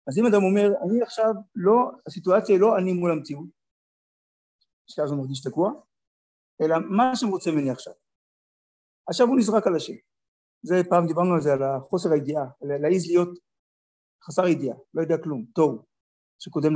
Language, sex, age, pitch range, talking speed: Hebrew, male, 50-69, 135-195 Hz, 160 wpm